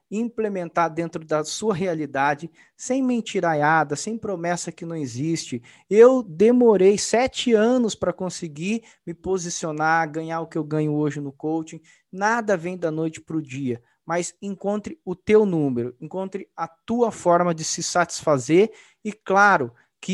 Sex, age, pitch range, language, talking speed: male, 20-39, 160-200 Hz, Portuguese, 150 wpm